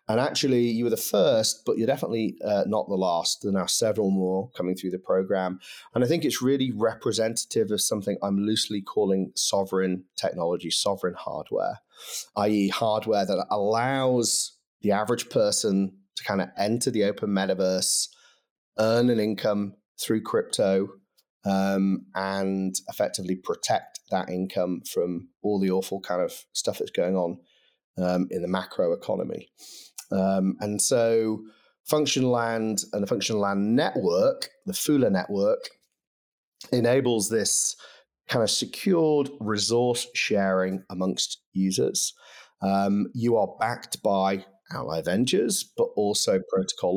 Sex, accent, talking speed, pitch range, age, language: male, British, 140 wpm, 95-120 Hz, 30-49, English